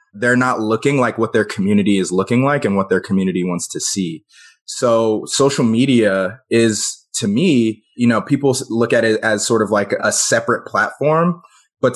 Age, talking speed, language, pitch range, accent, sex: 20-39, 185 wpm, English, 105-125 Hz, American, male